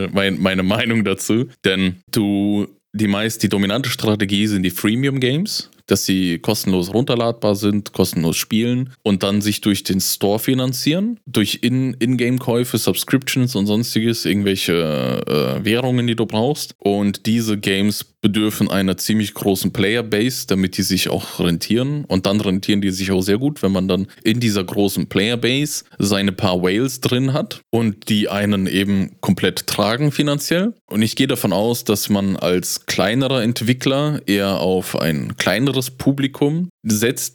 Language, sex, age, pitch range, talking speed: German, male, 20-39, 100-120 Hz, 155 wpm